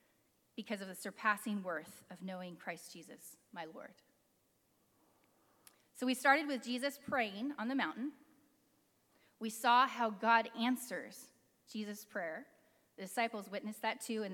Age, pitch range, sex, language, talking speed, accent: 30-49, 215-275 Hz, female, English, 140 wpm, American